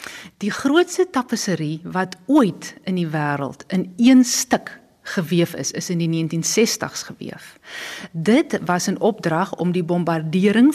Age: 50-69